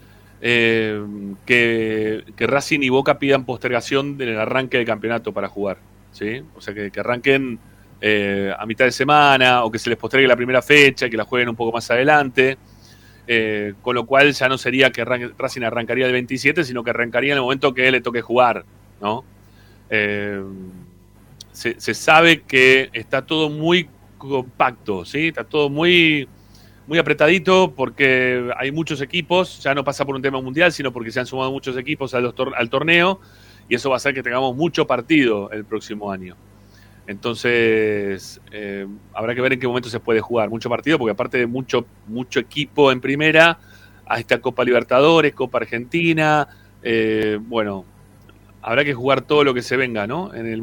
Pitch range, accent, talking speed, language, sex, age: 105-135 Hz, Argentinian, 185 wpm, Spanish, male, 30-49